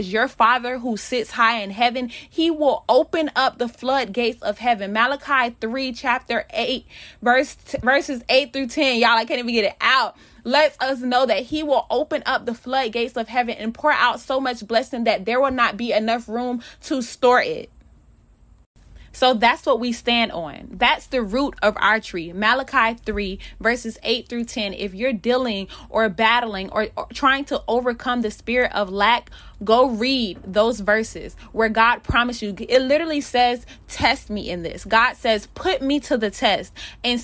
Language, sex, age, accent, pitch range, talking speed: English, female, 20-39, American, 220-265 Hz, 185 wpm